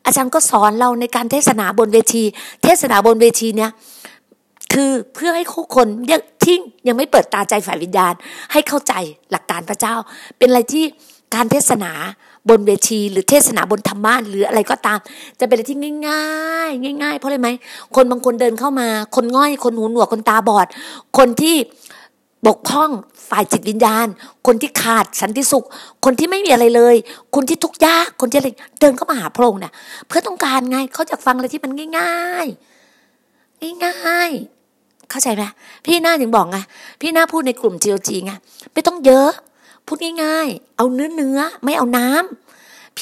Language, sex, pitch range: Thai, female, 225-295 Hz